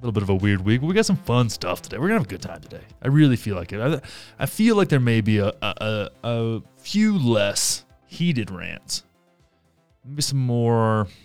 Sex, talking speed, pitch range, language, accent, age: male, 240 wpm, 110-140 Hz, English, American, 20-39